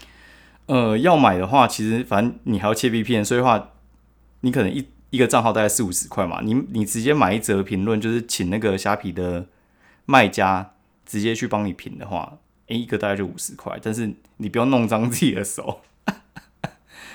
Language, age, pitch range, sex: Chinese, 20-39, 90-115 Hz, male